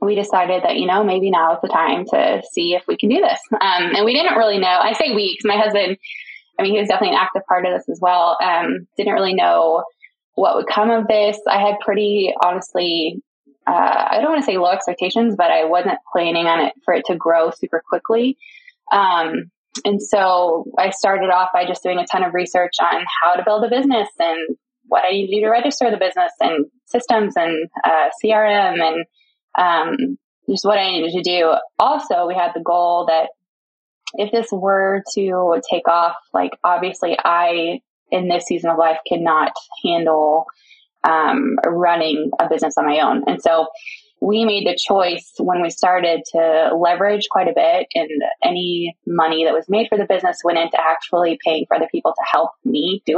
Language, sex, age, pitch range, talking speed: English, female, 20-39, 170-215 Hz, 200 wpm